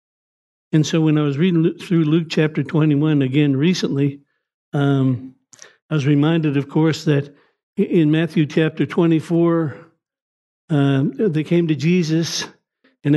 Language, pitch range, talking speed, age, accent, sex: English, 145-170 Hz, 130 wpm, 60-79, American, male